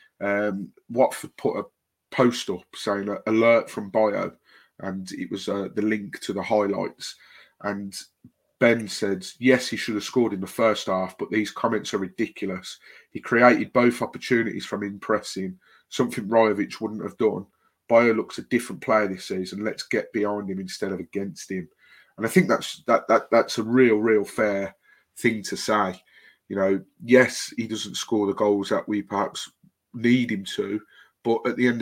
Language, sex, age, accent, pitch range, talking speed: English, male, 30-49, British, 100-115 Hz, 180 wpm